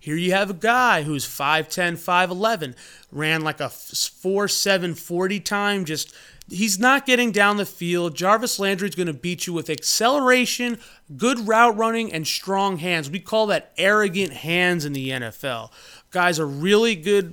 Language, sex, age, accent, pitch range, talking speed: English, male, 30-49, American, 155-220 Hz, 165 wpm